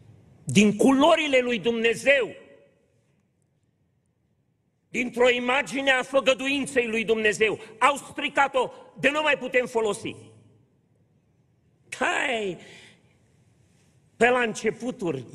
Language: Romanian